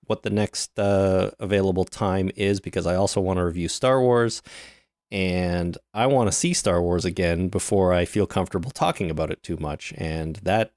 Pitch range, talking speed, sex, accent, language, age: 85-110 Hz, 190 wpm, male, American, English, 30-49